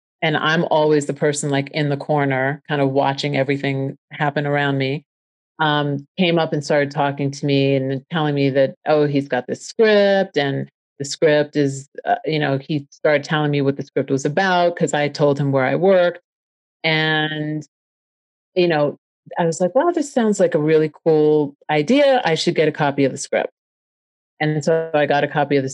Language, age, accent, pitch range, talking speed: English, 40-59, American, 140-155 Hz, 205 wpm